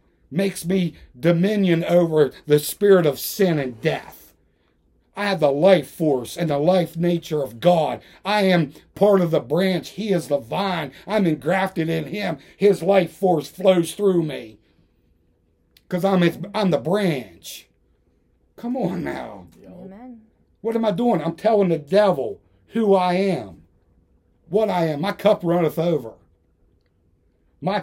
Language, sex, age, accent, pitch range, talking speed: English, male, 60-79, American, 130-185 Hz, 145 wpm